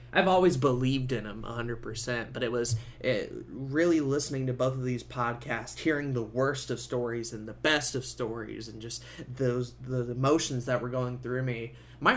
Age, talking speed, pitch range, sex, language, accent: 20-39, 185 wpm, 120-145 Hz, male, English, American